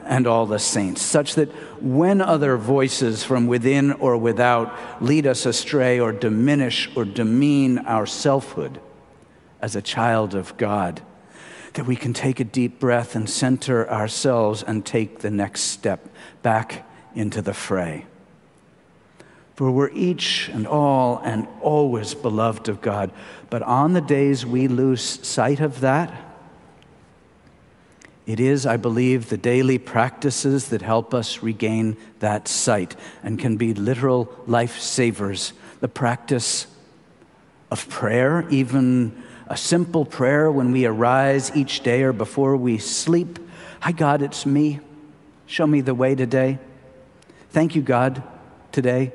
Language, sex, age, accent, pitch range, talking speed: English, male, 50-69, American, 115-140 Hz, 140 wpm